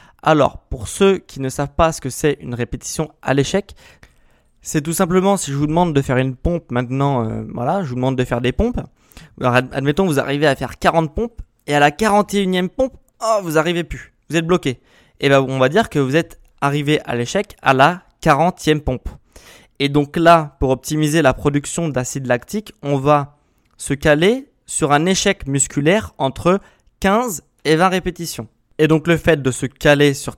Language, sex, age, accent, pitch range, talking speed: French, male, 20-39, French, 130-180 Hz, 200 wpm